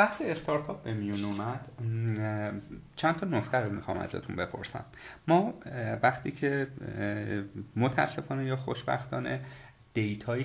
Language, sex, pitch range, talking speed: Persian, male, 105-140 Hz, 100 wpm